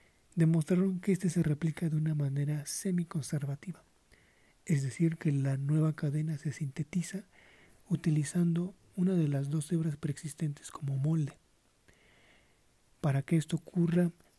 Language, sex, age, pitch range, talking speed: Spanish, male, 40-59, 145-170 Hz, 125 wpm